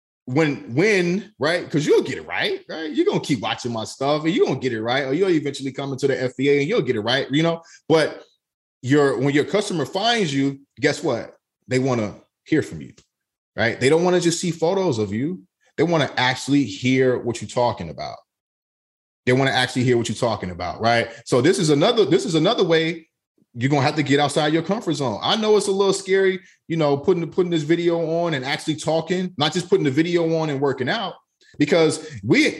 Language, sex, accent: English, male, American